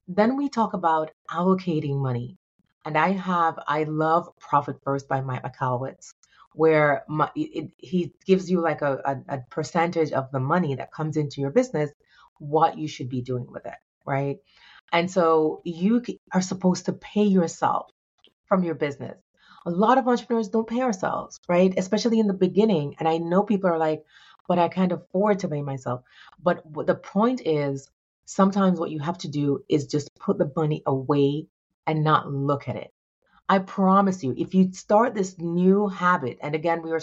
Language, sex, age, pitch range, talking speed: English, female, 30-49, 145-185 Hz, 180 wpm